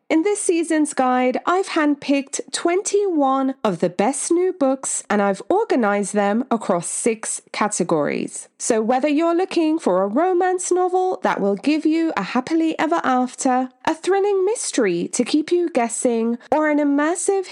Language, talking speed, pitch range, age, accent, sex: English, 155 wpm, 230-330 Hz, 20-39, British, female